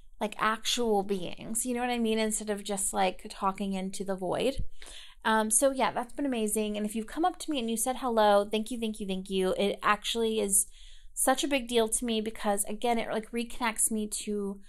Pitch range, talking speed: 210-275 Hz, 225 wpm